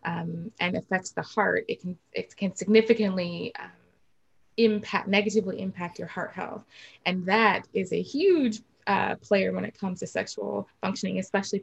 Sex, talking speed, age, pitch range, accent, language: female, 155 wpm, 20-39, 180-215 Hz, American, English